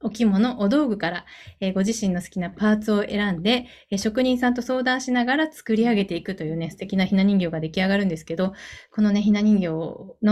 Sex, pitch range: female, 180-235 Hz